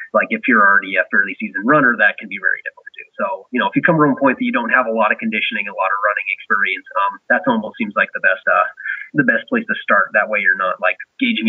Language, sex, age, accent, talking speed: English, male, 30-49, American, 290 wpm